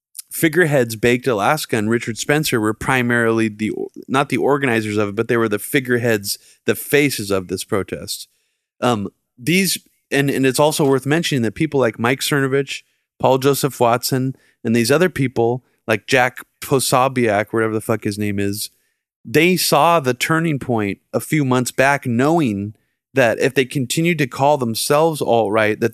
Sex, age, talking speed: male, 30-49, 165 wpm